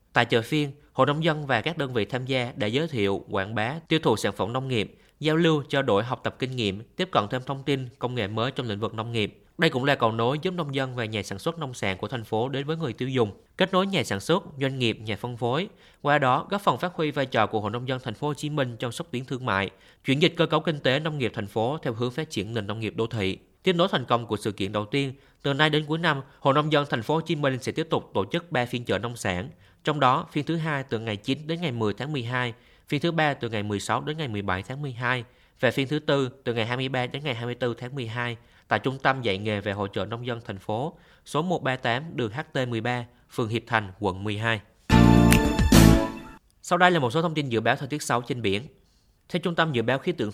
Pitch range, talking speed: 115-150 Hz, 270 wpm